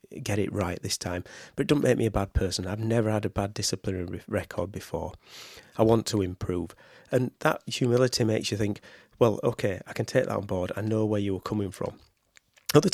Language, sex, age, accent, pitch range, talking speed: English, male, 30-49, British, 100-120 Hz, 220 wpm